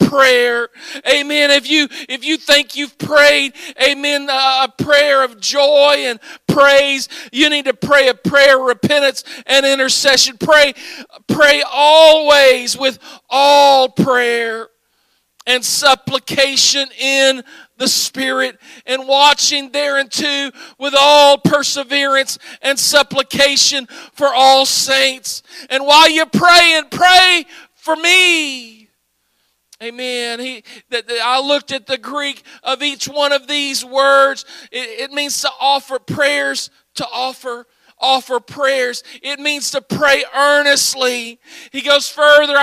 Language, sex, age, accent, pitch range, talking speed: English, male, 50-69, American, 265-300 Hz, 125 wpm